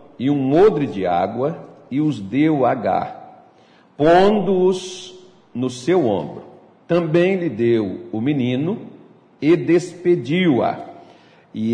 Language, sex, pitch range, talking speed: Portuguese, male, 110-170 Hz, 110 wpm